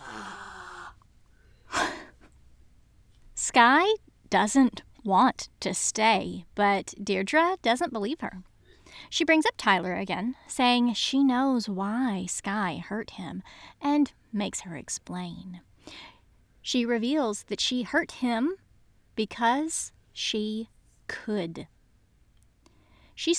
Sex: female